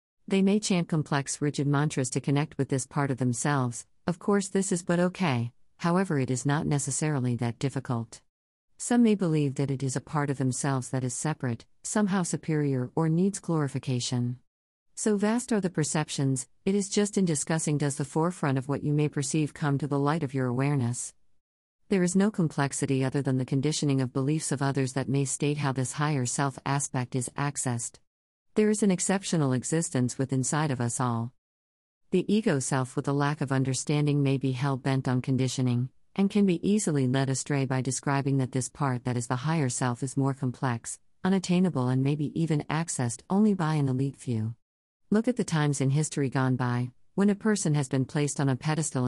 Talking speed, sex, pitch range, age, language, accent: 195 wpm, female, 130-155 Hz, 50-69, English, American